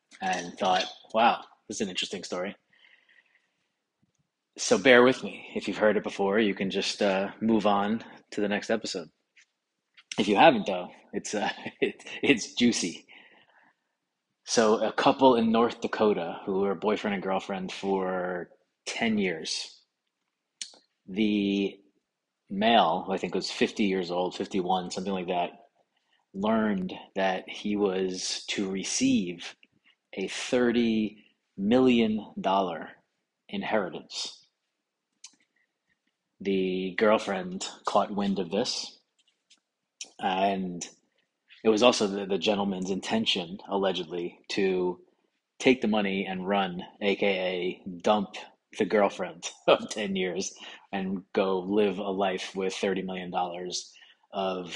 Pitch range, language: 95-110 Hz, English